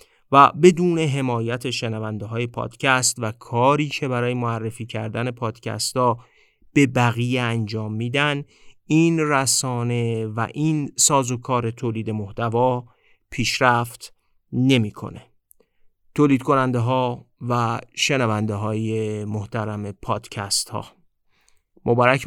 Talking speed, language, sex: 105 wpm, Persian, male